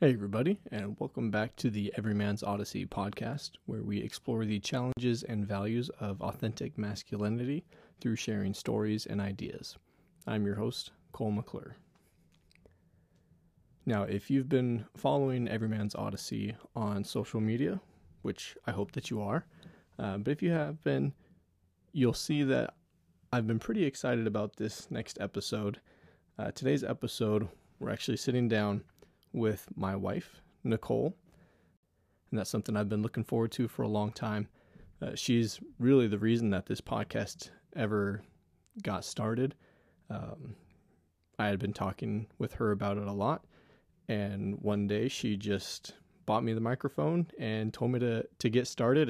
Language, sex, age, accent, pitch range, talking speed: English, male, 20-39, American, 100-120 Hz, 150 wpm